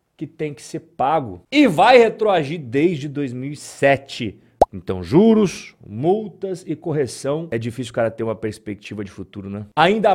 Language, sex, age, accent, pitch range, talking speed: Portuguese, male, 40-59, Brazilian, 145-200 Hz, 155 wpm